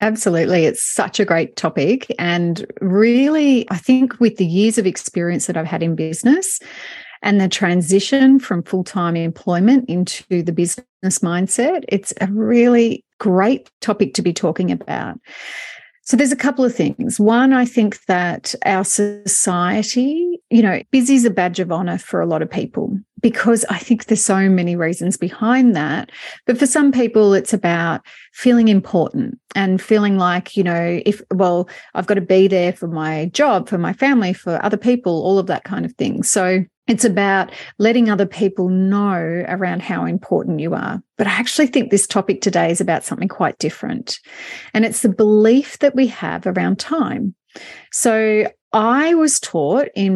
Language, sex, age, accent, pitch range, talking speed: English, female, 30-49, Australian, 185-240 Hz, 175 wpm